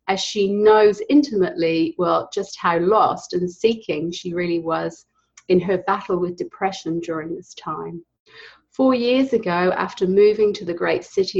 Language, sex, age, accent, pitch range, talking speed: English, female, 30-49, British, 175-215 Hz, 160 wpm